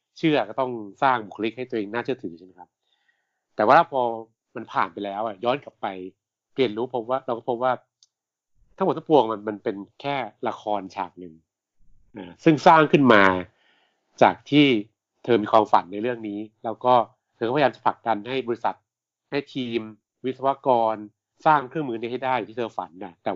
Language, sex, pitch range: Thai, male, 105-130 Hz